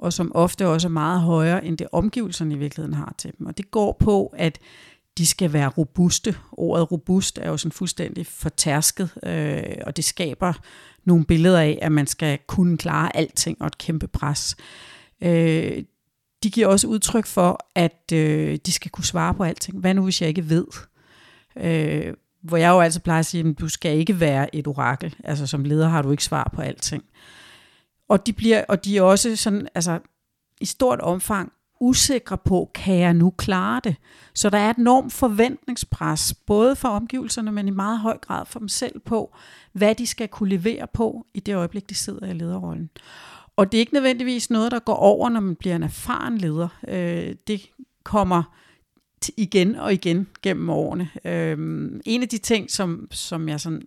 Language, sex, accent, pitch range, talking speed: Danish, female, native, 160-210 Hz, 185 wpm